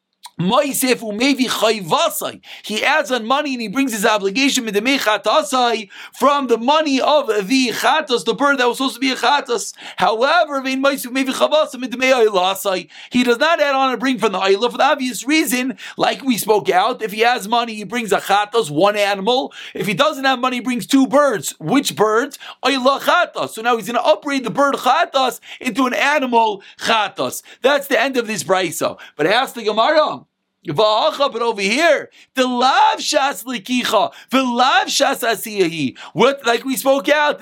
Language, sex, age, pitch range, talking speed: English, male, 40-59, 220-275 Hz, 155 wpm